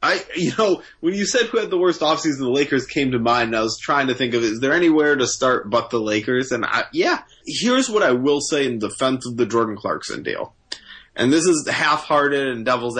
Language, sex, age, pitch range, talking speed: English, male, 20-39, 115-140 Hz, 235 wpm